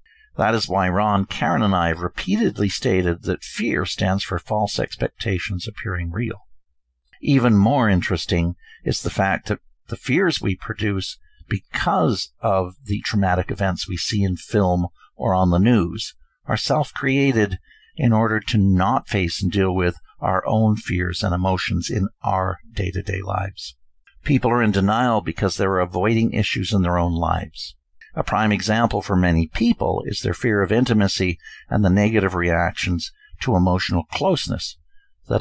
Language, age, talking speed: English, 50-69, 160 wpm